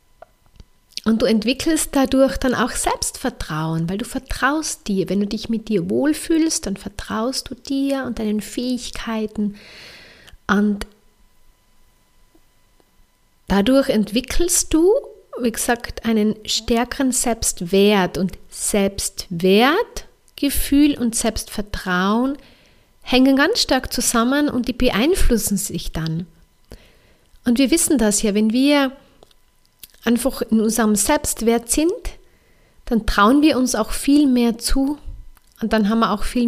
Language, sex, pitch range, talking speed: German, female, 210-275 Hz, 120 wpm